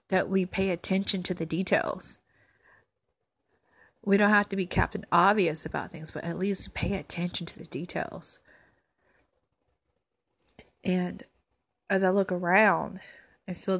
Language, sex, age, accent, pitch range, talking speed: English, female, 20-39, American, 165-190 Hz, 135 wpm